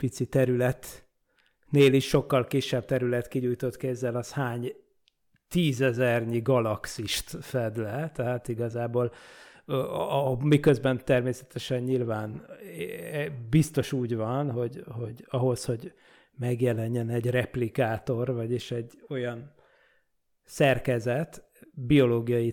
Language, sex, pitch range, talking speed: Hungarian, male, 120-135 Hz, 100 wpm